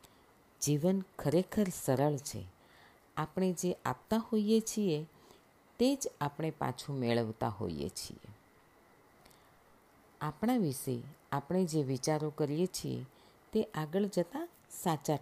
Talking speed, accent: 105 wpm, native